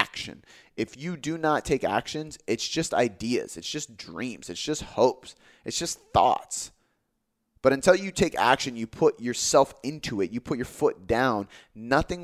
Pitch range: 115-150 Hz